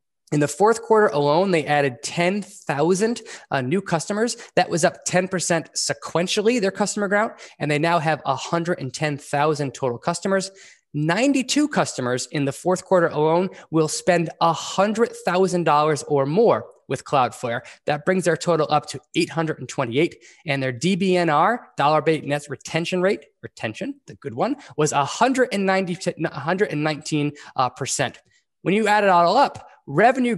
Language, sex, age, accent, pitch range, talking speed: English, male, 20-39, American, 150-210 Hz, 135 wpm